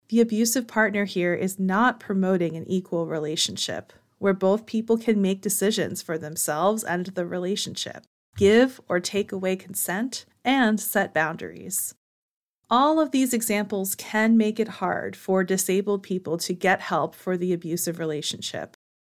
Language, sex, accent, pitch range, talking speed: English, female, American, 180-230 Hz, 150 wpm